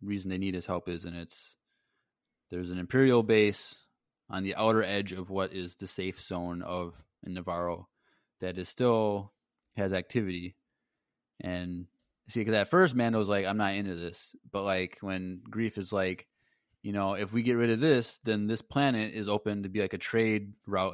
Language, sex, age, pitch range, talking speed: English, male, 20-39, 95-110 Hz, 190 wpm